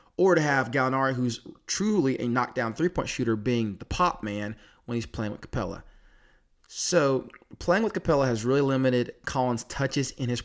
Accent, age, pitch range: American, 30-49, 110-140 Hz